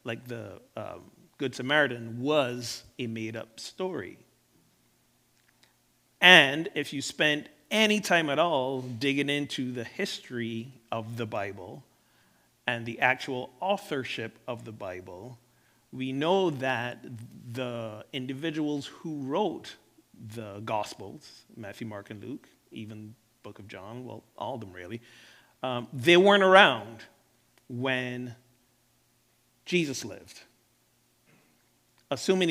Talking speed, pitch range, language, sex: 115 wpm, 115-145 Hz, English, male